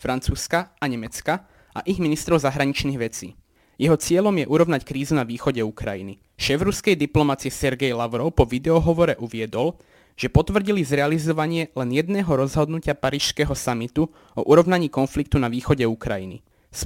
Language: Slovak